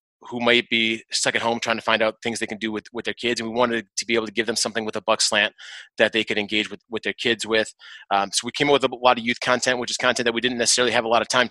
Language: English